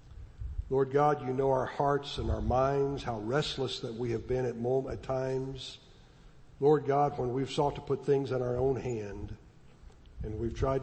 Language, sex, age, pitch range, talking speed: English, male, 60-79, 115-145 Hz, 185 wpm